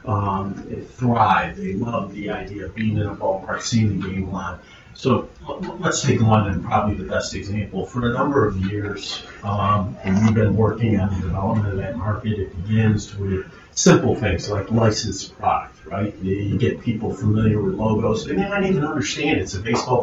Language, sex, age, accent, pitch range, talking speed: English, male, 40-59, American, 100-120 Hz, 195 wpm